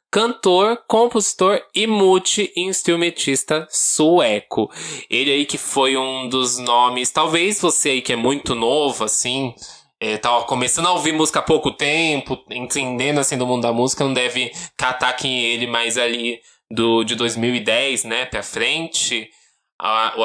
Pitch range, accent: 120-150 Hz, Brazilian